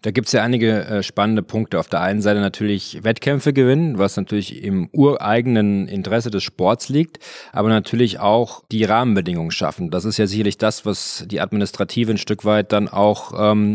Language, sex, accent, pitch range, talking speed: German, male, German, 100-120 Hz, 185 wpm